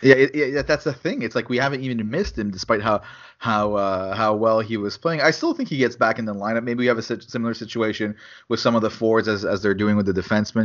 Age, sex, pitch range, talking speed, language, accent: 20-39, male, 105-120 Hz, 275 wpm, English, Canadian